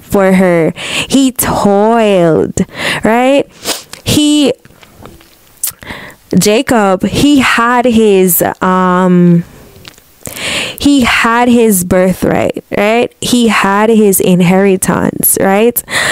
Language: English